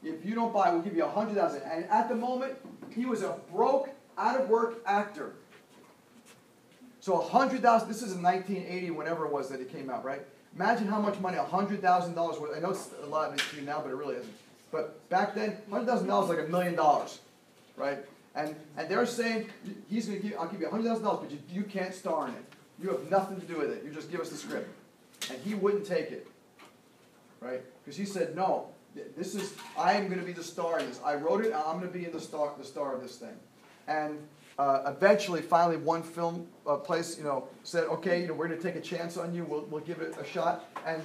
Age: 40-59